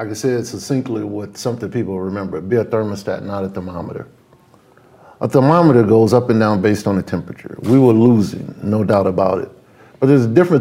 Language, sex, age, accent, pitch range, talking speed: English, male, 50-69, American, 100-125 Hz, 215 wpm